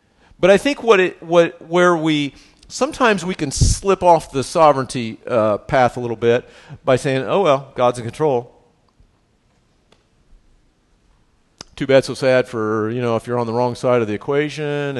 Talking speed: 170 wpm